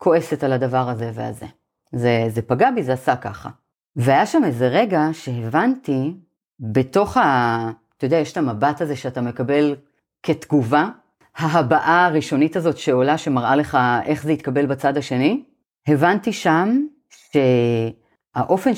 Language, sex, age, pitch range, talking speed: Hebrew, female, 40-59, 125-190 Hz, 135 wpm